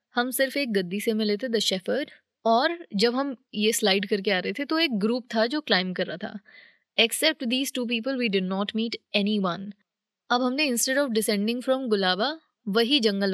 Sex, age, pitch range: female, 20-39, 205-275 Hz